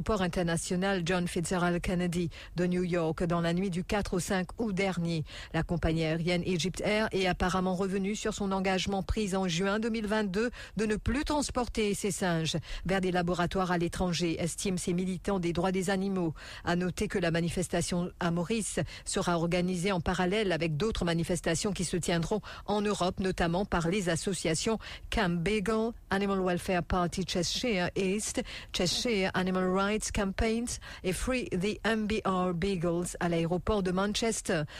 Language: English